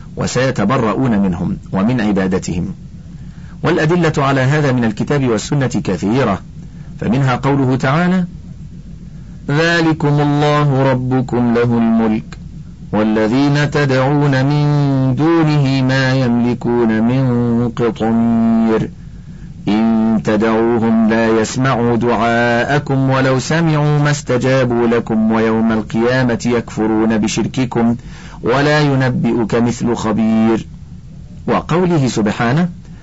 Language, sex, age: Arabic, male, 50-69